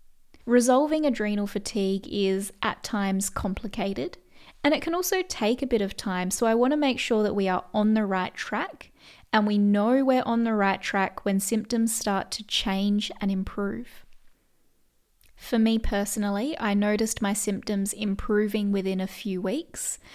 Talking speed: 165 wpm